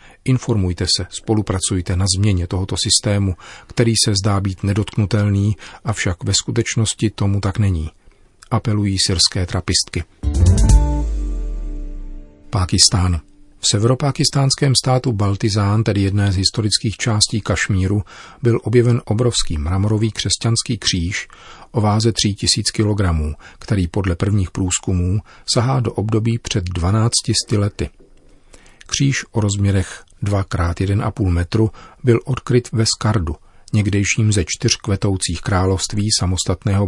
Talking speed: 115 wpm